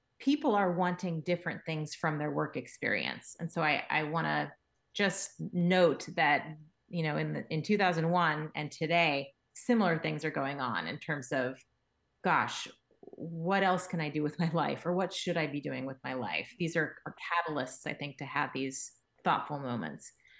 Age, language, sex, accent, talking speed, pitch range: 30-49, English, female, American, 185 wpm, 160-195 Hz